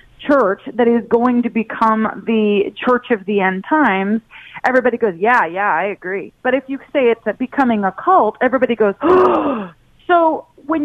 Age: 30-49